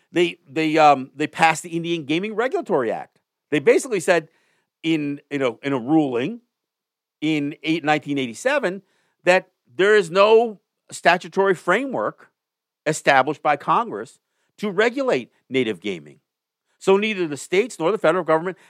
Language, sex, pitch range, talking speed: English, male, 150-215 Hz, 140 wpm